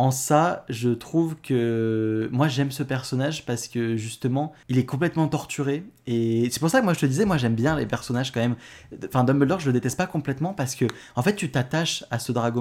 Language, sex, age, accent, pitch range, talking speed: French, male, 20-39, French, 115-145 Hz, 230 wpm